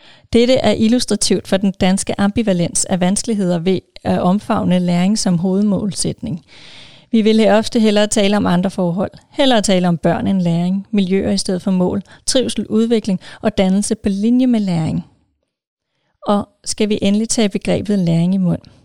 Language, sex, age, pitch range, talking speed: Danish, female, 30-49, 185-225 Hz, 165 wpm